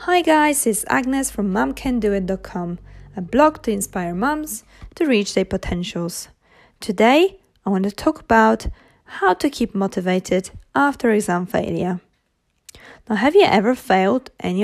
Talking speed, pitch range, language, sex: 140 wpm, 190-260 Hz, English, female